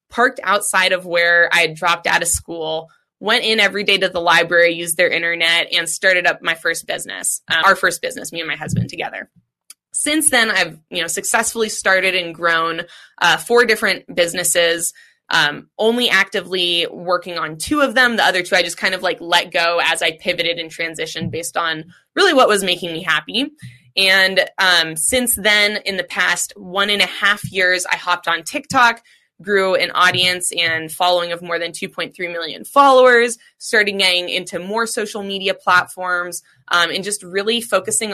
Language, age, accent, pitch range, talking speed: English, 20-39, American, 170-210 Hz, 185 wpm